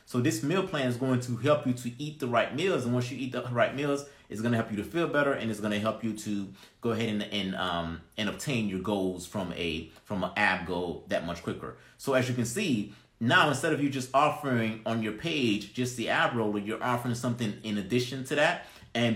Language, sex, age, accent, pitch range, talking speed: English, male, 30-49, American, 100-125 Hz, 245 wpm